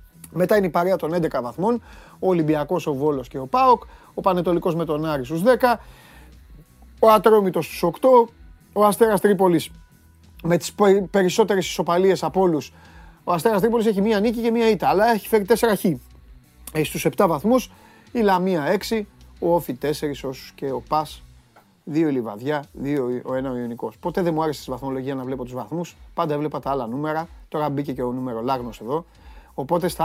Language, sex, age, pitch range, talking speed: Greek, male, 30-49, 125-180 Hz, 185 wpm